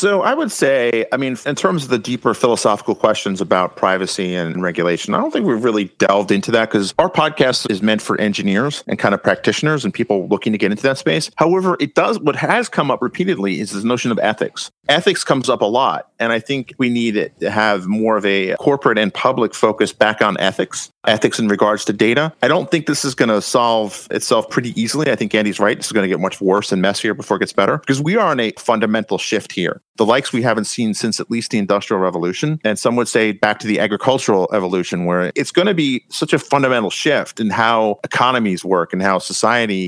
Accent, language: American, English